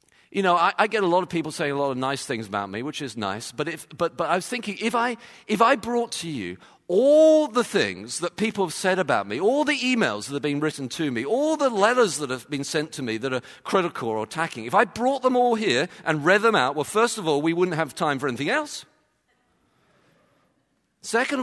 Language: English